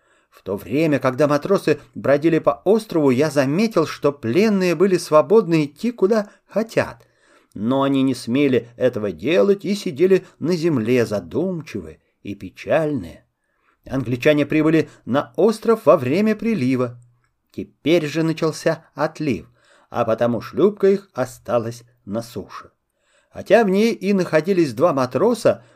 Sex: male